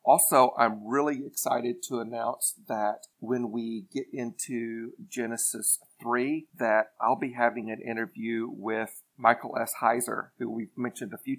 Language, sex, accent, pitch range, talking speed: English, male, American, 115-130 Hz, 150 wpm